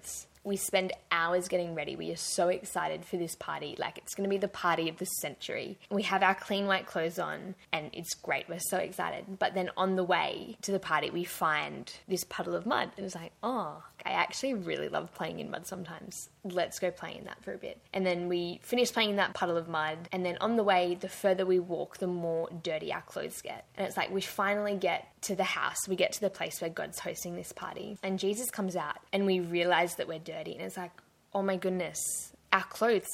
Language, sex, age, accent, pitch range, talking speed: English, female, 10-29, Australian, 170-195 Hz, 235 wpm